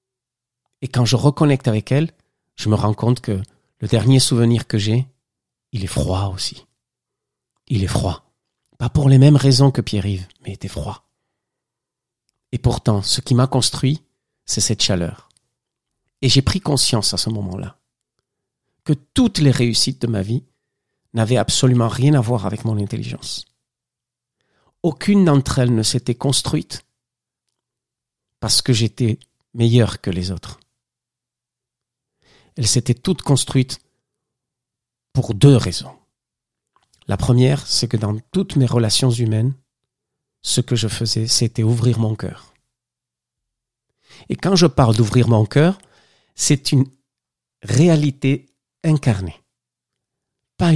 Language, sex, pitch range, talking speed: French, male, 115-135 Hz, 135 wpm